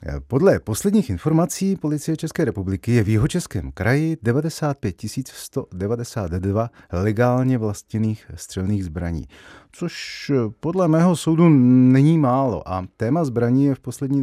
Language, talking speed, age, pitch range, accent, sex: Czech, 120 wpm, 30-49, 95-140 Hz, native, male